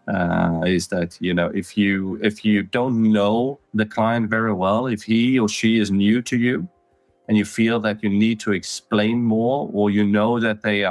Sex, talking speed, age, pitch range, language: male, 205 wpm, 40-59, 95-110 Hz, Finnish